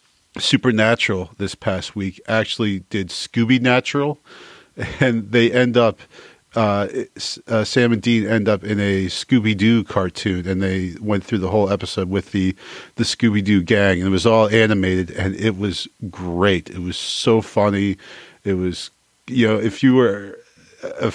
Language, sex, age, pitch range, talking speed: English, male, 40-59, 95-115 Hz, 155 wpm